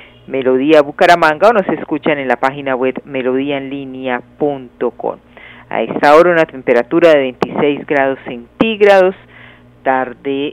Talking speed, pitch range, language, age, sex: 115 wpm, 130-165 Hz, Spanish, 50-69, female